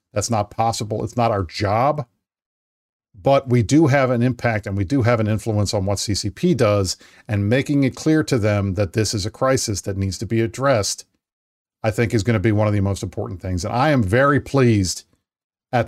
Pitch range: 105-125 Hz